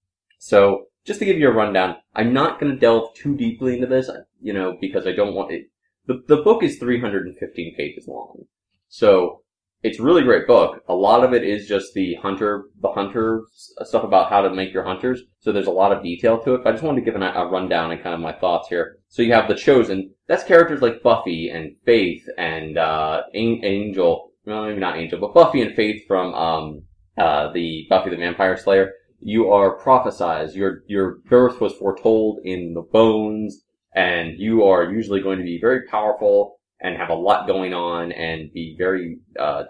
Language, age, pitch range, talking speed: English, 20-39, 95-125 Hz, 205 wpm